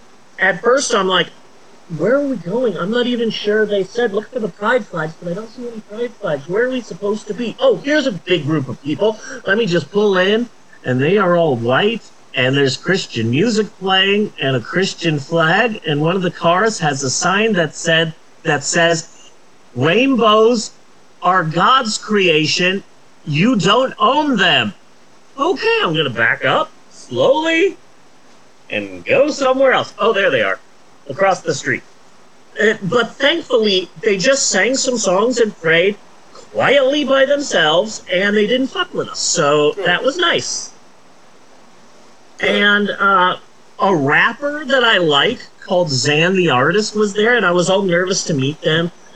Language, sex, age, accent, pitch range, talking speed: English, male, 40-59, American, 150-230 Hz, 170 wpm